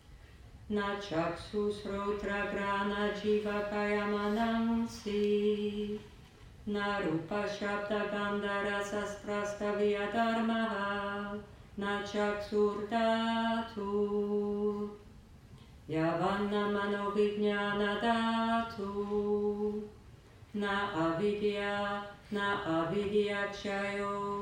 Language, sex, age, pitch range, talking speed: English, female, 40-59, 200-210 Hz, 55 wpm